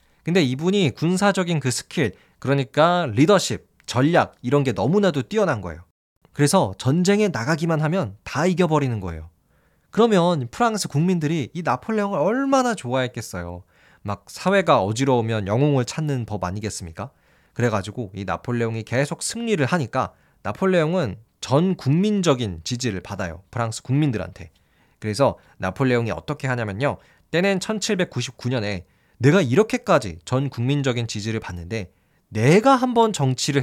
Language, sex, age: Korean, male, 20-39